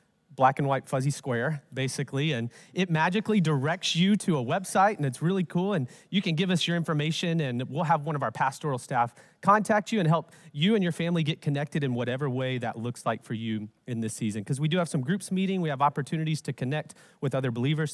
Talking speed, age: 230 wpm, 30-49